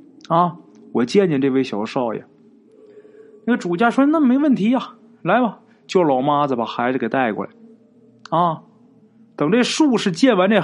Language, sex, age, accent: Chinese, male, 20-39, native